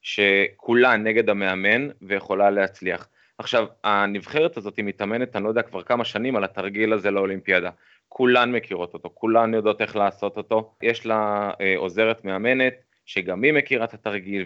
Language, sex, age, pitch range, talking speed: Hebrew, male, 20-39, 95-120 Hz, 160 wpm